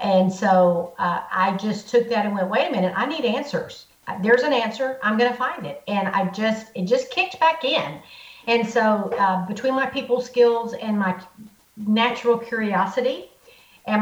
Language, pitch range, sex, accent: English, 190-230 Hz, female, American